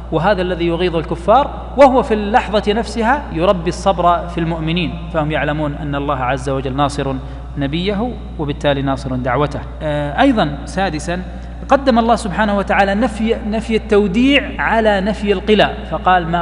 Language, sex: Arabic, male